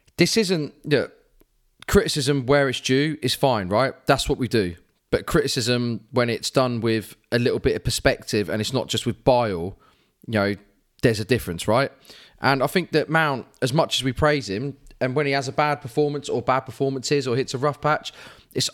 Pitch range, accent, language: 115-140 Hz, British, English